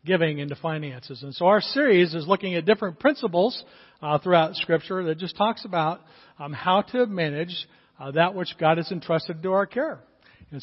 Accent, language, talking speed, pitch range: American, English, 185 wpm, 155-190 Hz